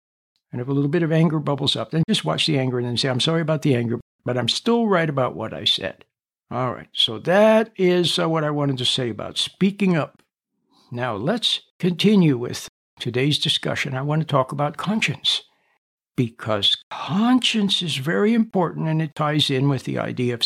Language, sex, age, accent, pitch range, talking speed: English, male, 60-79, American, 140-185 Hz, 200 wpm